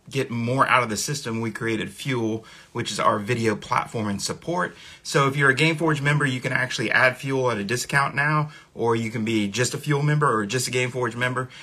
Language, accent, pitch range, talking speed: English, American, 115-150 Hz, 225 wpm